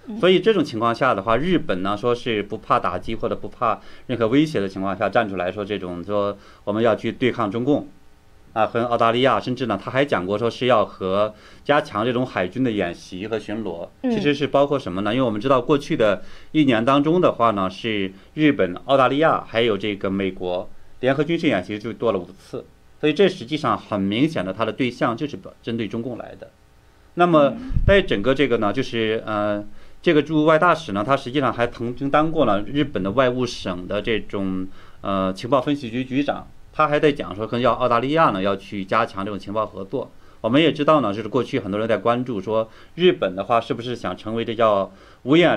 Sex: male